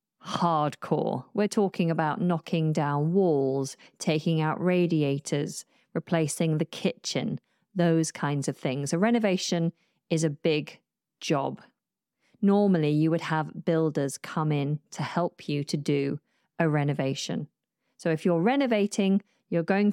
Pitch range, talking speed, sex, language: 165-235 Hz, 130 wpm, female, English